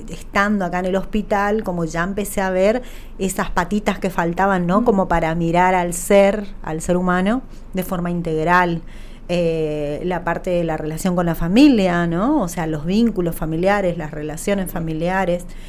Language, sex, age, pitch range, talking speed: Spanish, female, 30-49, 155-190 Hz, 170 wpm